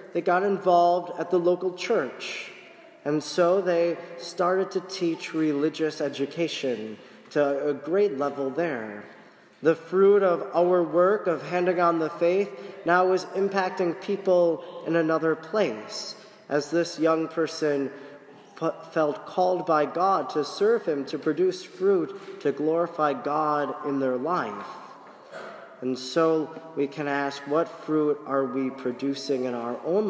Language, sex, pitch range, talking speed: English, male, 140-180 Hz, 140 wpm